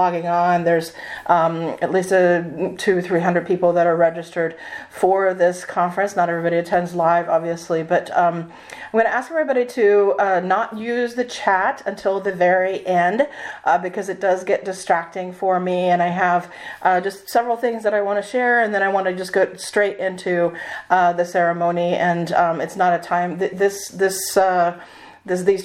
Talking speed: 190 wpm